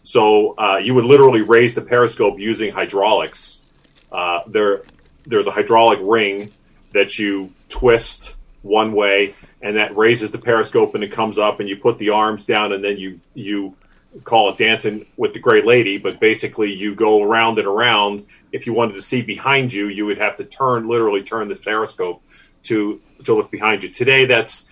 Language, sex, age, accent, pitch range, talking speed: English, male, 40-59, American, 105-140 Hz, 185 wpm